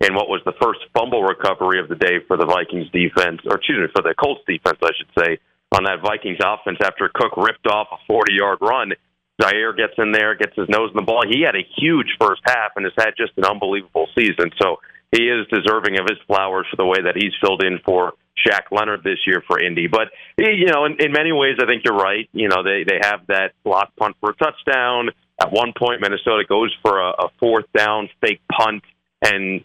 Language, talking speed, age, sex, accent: English, 230 wpm, 40-59, male, American